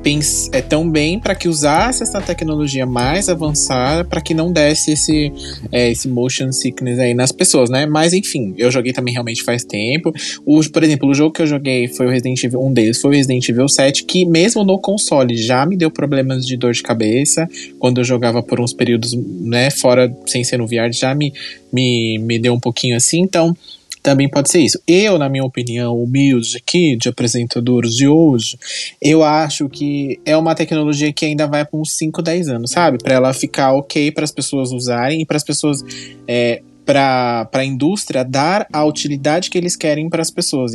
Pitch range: 125-155 Hz